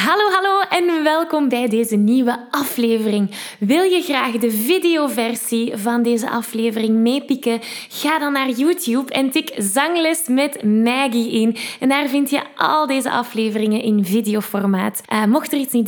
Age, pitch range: 10-29, 225-310 Hz